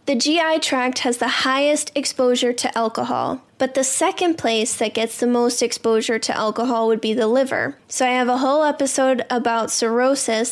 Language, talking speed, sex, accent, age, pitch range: English, 185 wpm, female, American, 10-29, 235-270 Hz